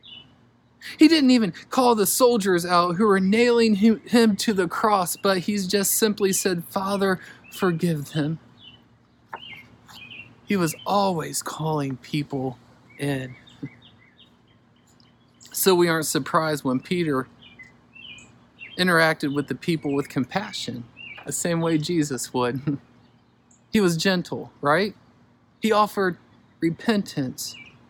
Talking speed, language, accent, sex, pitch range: 110 wpm, English, American, male, 140-200 Hz